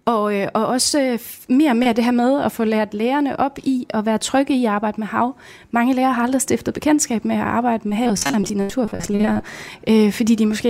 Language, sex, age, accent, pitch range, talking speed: Danish, female, 30-49, native, 200-235 Hz, 230 wpm